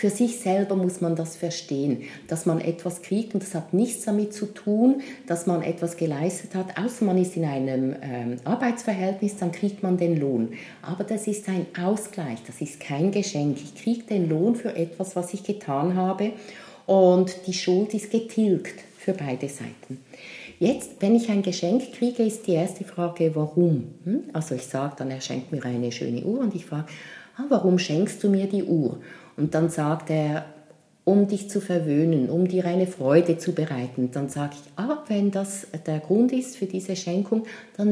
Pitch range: 155-205 Hz